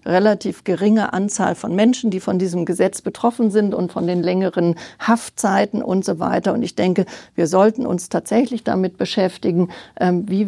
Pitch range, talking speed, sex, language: 180-220 Hz, 165 wpm, female, German